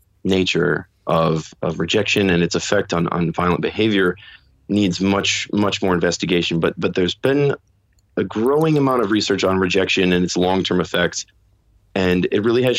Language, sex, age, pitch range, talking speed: English, male, 30-49, 90-115 Hz, 165 wpm